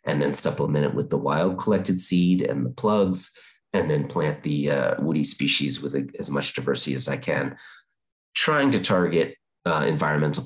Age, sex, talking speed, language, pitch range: 30-49, male, 185 wpm, English, 75-95 Hz